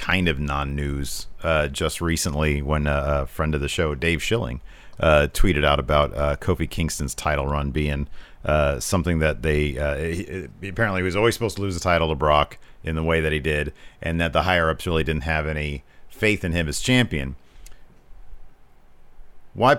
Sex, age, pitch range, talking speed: male, 40-59, 75-100 Hz, 180 wpm